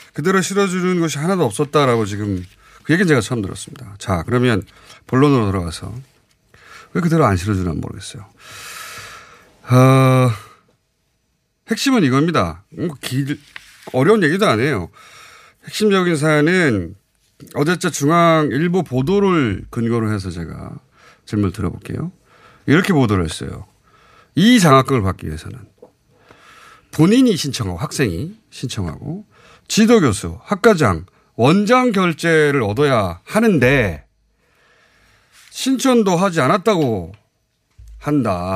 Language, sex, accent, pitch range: Korean, male, native, 105-180 Hz